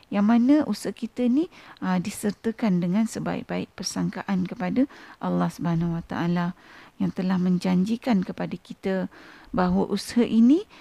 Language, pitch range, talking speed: Malay, 180-230 Hz, 130 wpm